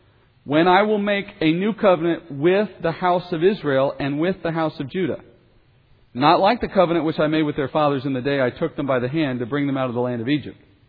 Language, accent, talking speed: English, American, 255 wpm